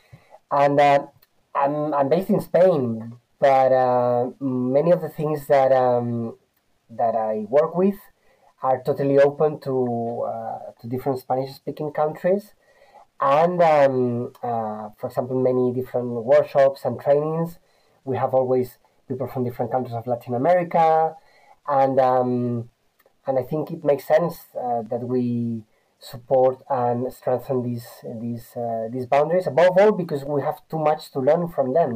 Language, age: English, 30-49